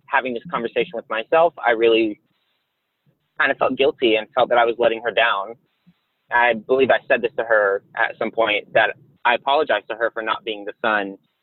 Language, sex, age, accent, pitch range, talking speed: English, male, 20-39, American, 110-135 Hz, 205 wpm